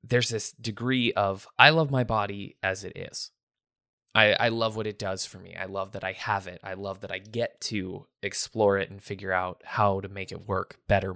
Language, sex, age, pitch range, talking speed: English, male, 20-39, 95-115 Hz, 225 wpm